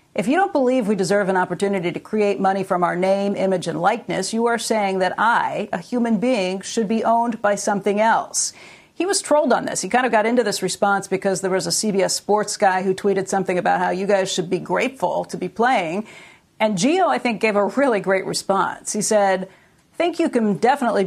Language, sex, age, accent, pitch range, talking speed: English, female, 50-69, American, 195-230 Hz, 225 wpm